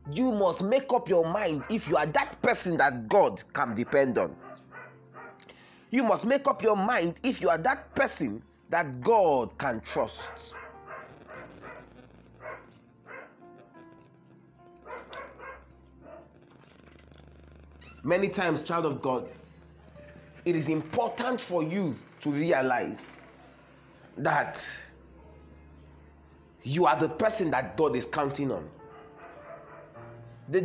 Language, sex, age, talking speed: English, male, 30-49, 105 wpm